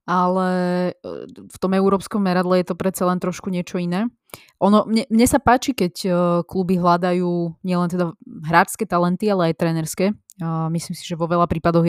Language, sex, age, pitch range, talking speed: Slovak, female, 20-39, 170-190 Hz, 175 wpm